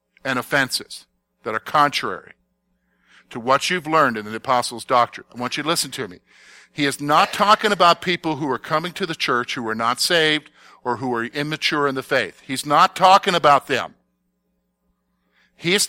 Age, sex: 50-69, male